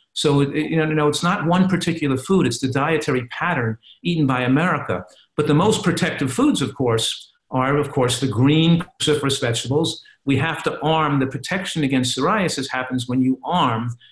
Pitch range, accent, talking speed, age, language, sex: 120-155 Hz, American, 175 wpm, 50-69, English, male